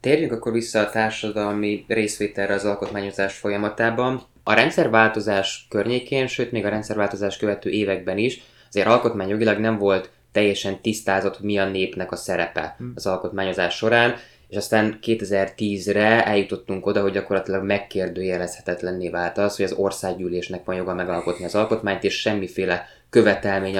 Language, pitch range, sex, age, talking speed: Hungarian, 95-110 Hz, male, 20-39, 135 wpm